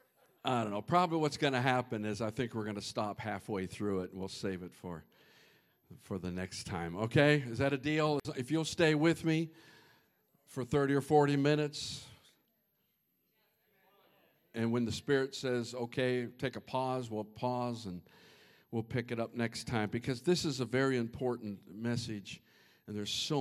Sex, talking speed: male, 180 wpm